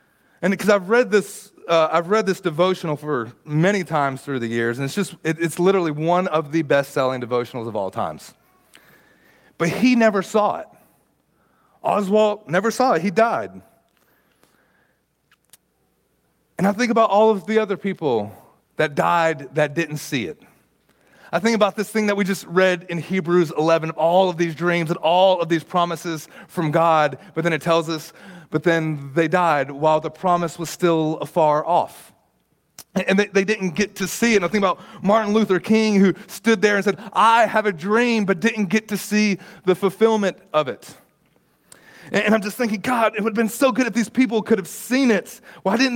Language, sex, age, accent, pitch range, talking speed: English, male, 30-49, American, 165-215 Hz, 190 wpm